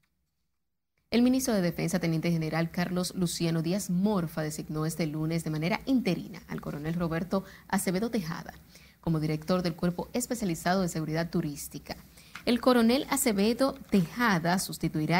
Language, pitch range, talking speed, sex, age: Spanish, 165-210 Hz, 135 wpm, female, 30-49